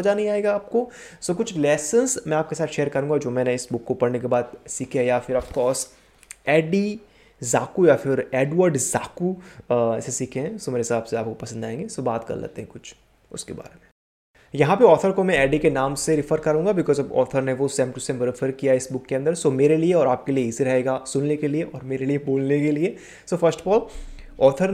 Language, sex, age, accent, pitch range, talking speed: Hindi, male, 20-39, native, 120-155 Hz, 55 wpm